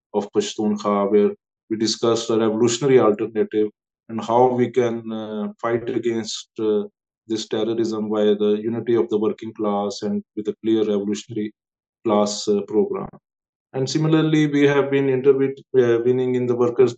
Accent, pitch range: Indian, 110-125 Hz